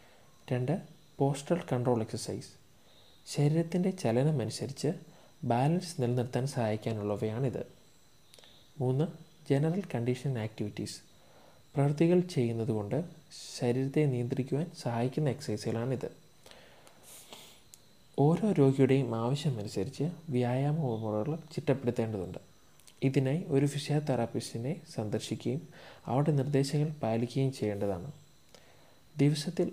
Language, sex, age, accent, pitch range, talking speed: Malayalam, male, 20-39, native, 120-150 Hz, 70 wpm